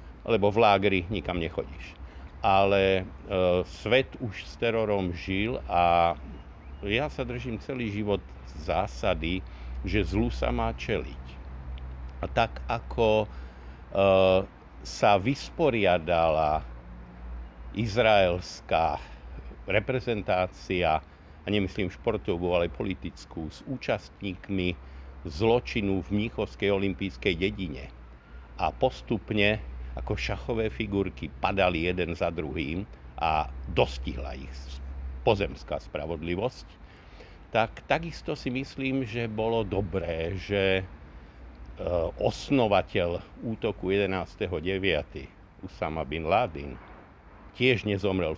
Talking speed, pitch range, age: 95 wpm, 75-105 Hz, 60-79